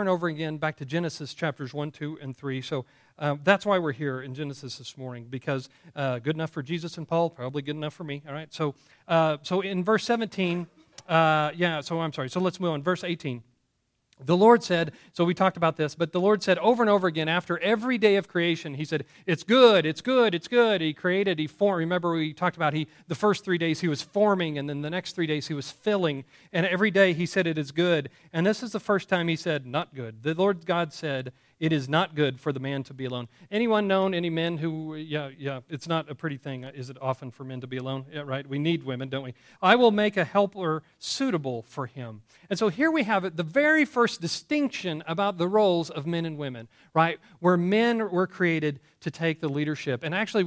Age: 40-59